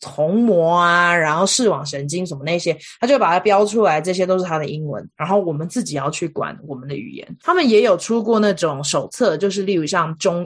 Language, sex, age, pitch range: Chinese, female, 20-39, 155-215 Hz